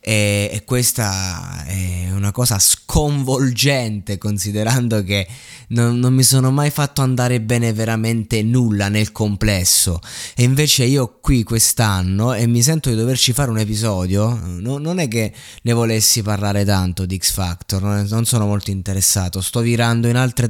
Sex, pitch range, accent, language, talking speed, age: male, 105-135 Hz, native, Italian, 150 wpm, 20-39